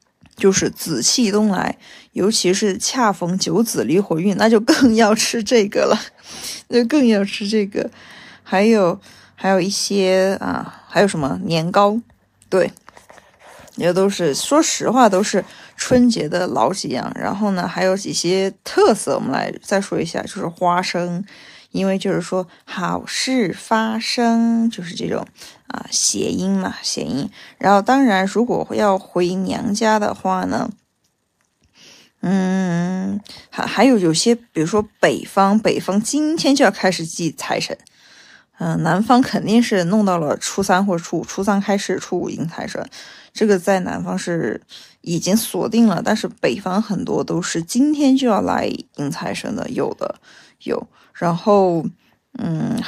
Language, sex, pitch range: Chinese, female, 185-230 Hz